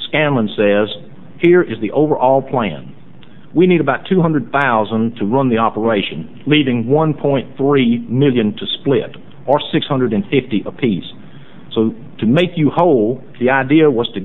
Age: 50-69